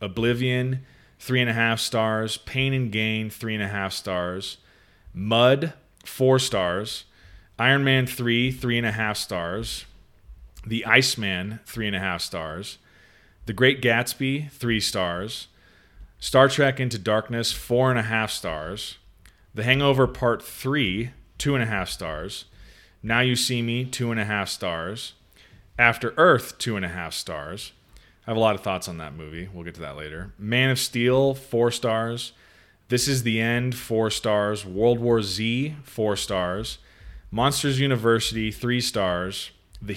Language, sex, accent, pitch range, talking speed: English, male, American, 95-125 Hz, 160 wpm